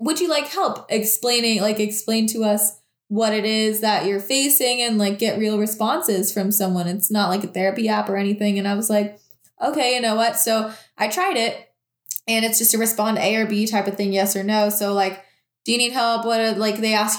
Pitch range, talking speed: 200-230 Hz, 235 wpm